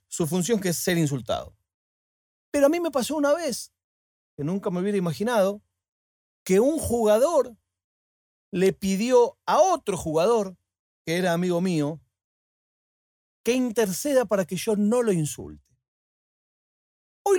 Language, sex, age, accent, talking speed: Spanish, male, 40-59, Argentinian, 135 wpm